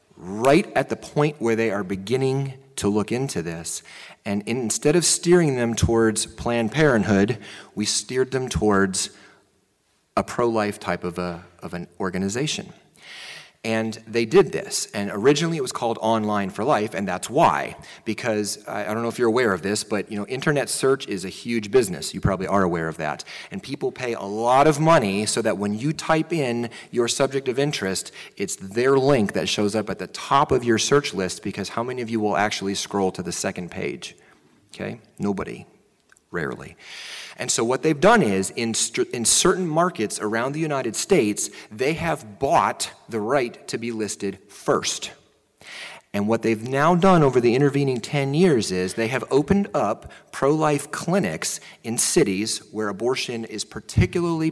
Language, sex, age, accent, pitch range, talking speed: English, male, 30-49, American, 100-135 Hz, 180 wpm